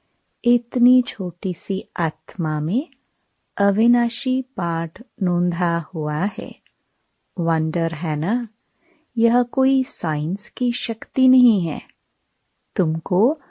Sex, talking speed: female, 95 wpm